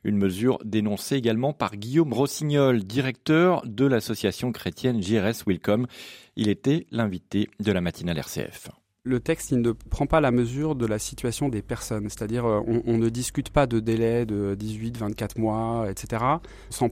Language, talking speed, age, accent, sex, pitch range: French, 165 wpm, 30-49, French, male, 115-140 Hz